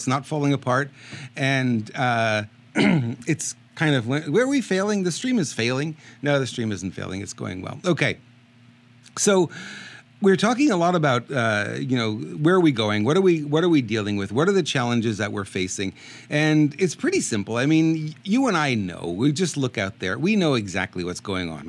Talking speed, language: 205 wpm, English